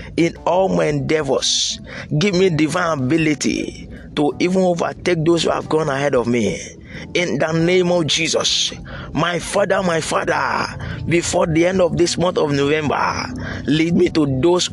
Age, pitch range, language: 20-39, 135-170 Hz, English